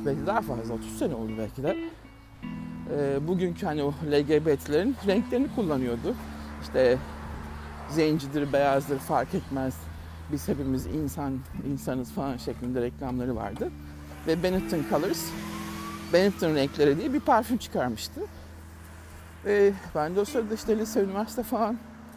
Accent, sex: native, male